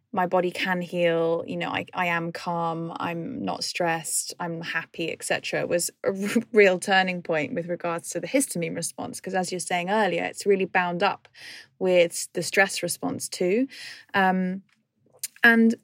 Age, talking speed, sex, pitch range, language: 20-39, 165 wpm, female, 175-210 Hz, English